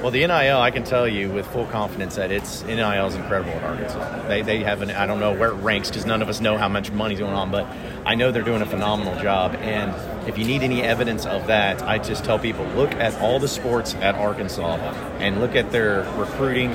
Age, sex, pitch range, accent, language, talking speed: 30-49, male, 100-115 Hz, American, English, 240 wpm